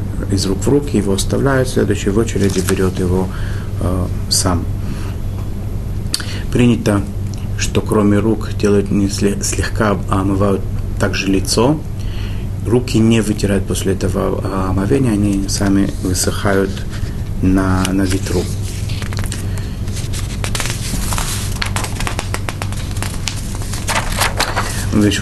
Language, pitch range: Russian, 100-105 Hz